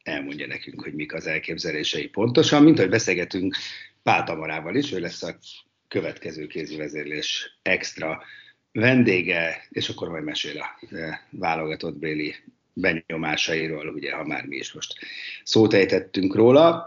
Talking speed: 130 wpm